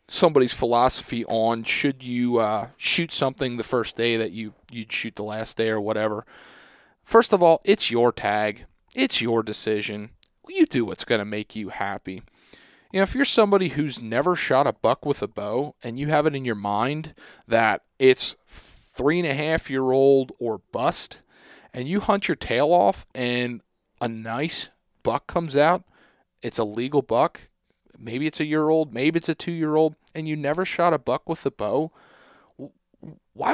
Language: English